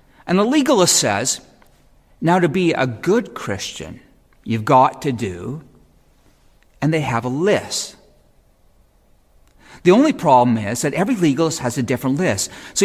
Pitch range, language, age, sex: 135-200 Hz, English, 40-59, male